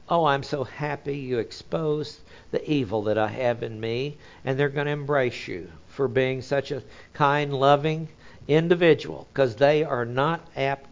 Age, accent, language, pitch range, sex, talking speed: 60-79, American, English, 120-155 Hz, male, 170 wpm